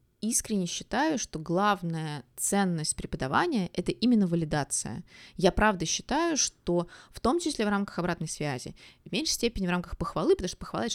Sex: female